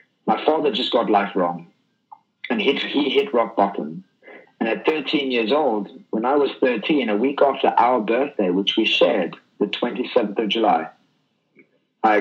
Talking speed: 160 wpm